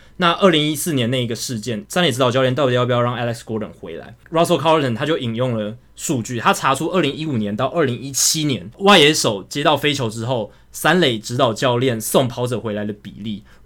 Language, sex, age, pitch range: Chinese, male, 20-39, 120-155 Hz